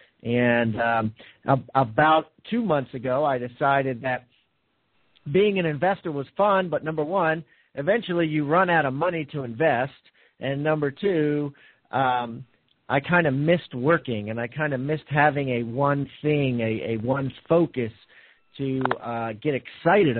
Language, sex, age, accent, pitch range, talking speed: English, male, 50-69, American, 120-150 Hz, 150 wpm